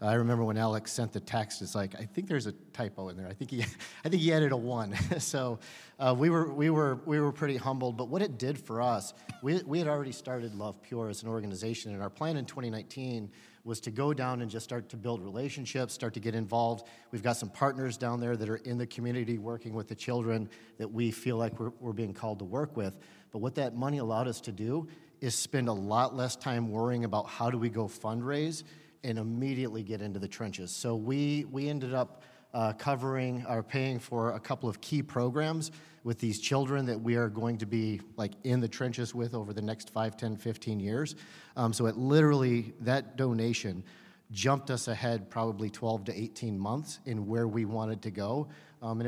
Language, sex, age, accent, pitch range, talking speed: English, male, 40-59, American, 110-130 Hz, 220 wpm